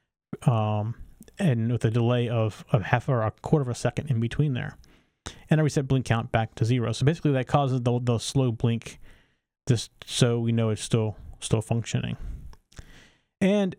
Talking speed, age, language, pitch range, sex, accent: 185 wpm, 30-49, English, 115-140 Hz, male, American